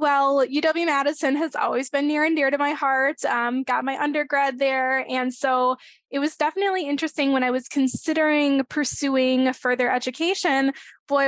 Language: English